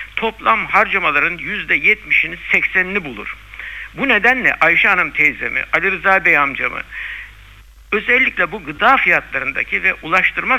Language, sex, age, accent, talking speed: Turkish, male, 60-79, native, 120 wpm